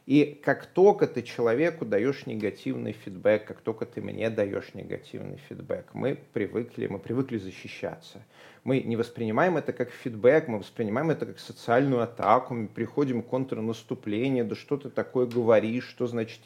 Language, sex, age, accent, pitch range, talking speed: Russian, male, 30-49, native, 110-135 Hz, 155 wpm